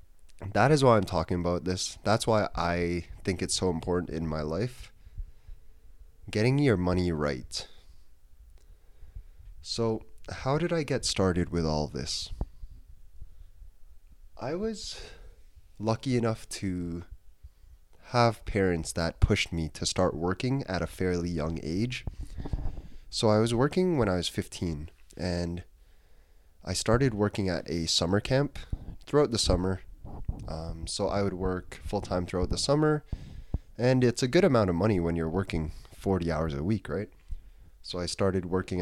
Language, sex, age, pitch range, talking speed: English, male, 20-39, 80-100 Hz, 145 wpm